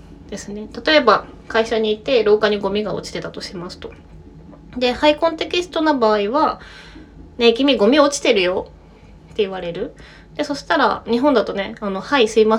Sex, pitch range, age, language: female, 205-280 Hz, 20-39, Japanese